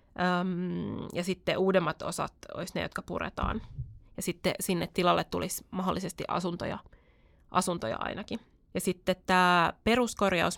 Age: 20-39